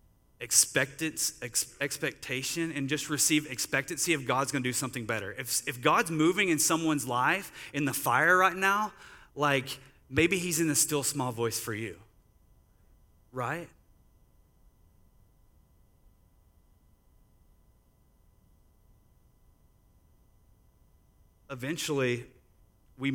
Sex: male